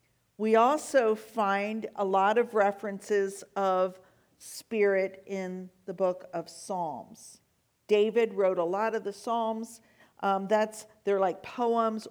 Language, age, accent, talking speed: English, 50-69, American, 125 wpm